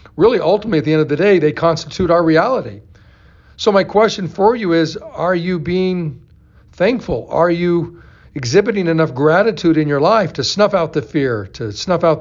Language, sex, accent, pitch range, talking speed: English, male, American, 125-180 Hz, 185 wpm